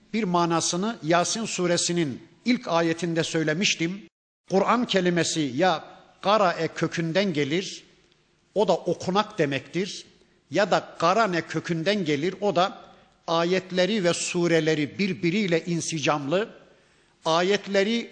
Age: 50-69